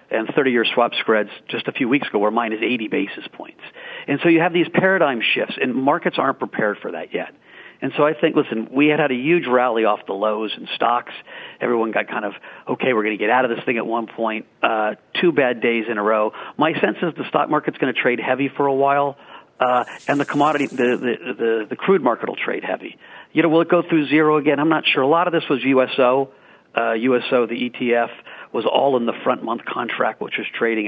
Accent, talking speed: American, 235 wpm